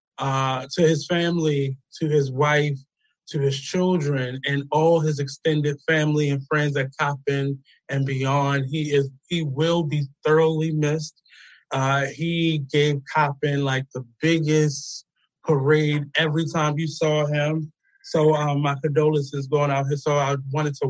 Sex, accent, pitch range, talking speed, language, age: male, American, 135-160 Hz, 150 wpm, English, 20-39